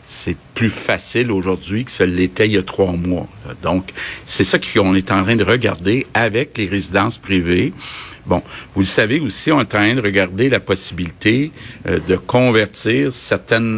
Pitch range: 95-115 Hz